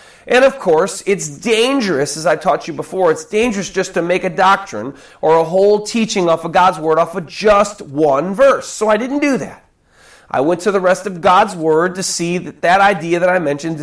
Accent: American